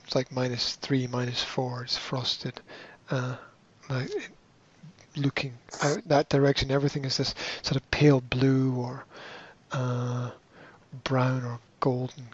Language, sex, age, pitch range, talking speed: English, male, 30-49, 130-155 Hz, 120 wpm